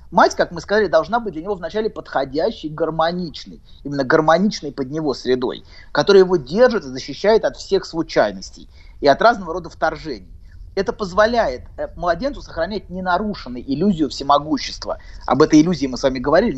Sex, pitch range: male, 145-215 Hz